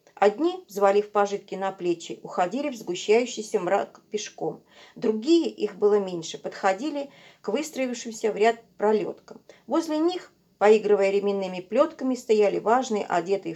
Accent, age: native, 40-59